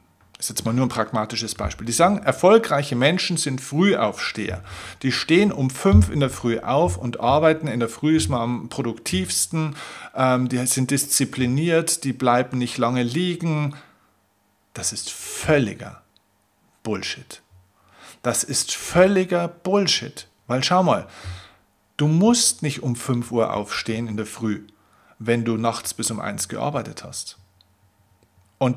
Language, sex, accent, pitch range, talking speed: German, male, German, 105-135 Hz, 145 wpm